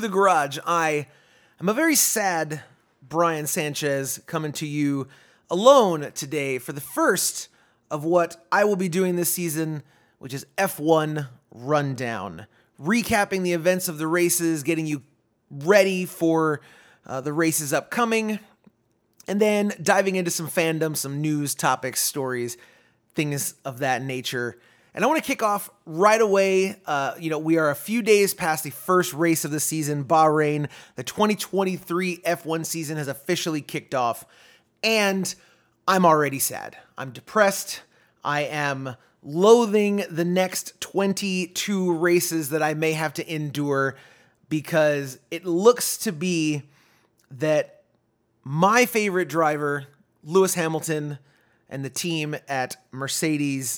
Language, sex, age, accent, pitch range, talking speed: English, male, 30-49, American, 145-185 Hz, 140 wpm